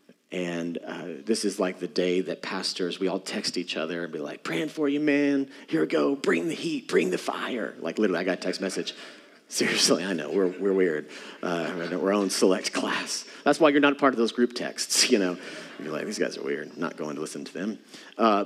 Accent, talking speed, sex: American, 245 wpm, male